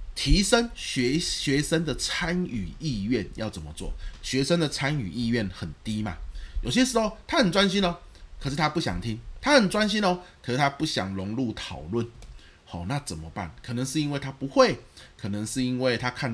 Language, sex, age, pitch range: Chinese, male, 20-39, 110-180 Hz